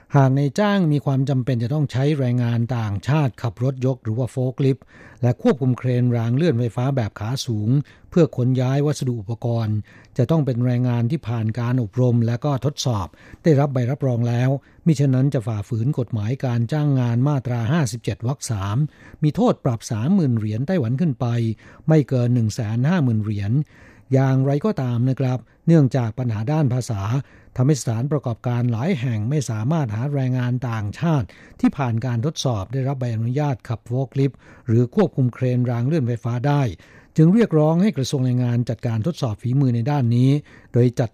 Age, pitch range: 60-79, 120-145 Hz